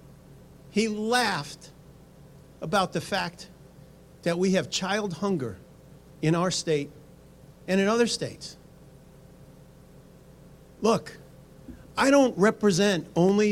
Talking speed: 100 wpm